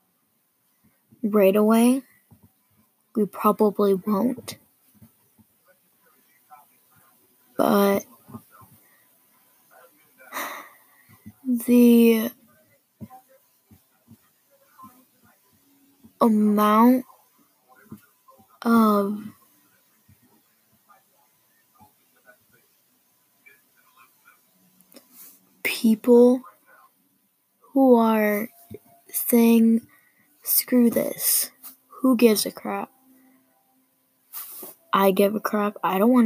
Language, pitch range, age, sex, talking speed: English, 210-255 Hz, 20-39, female, 45 wpm